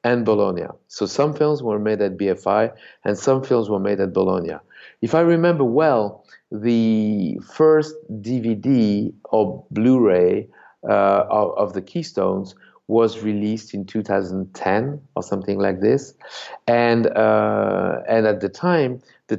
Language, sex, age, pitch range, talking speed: English, male, 50-69, 100-125 Hz, 140 wpm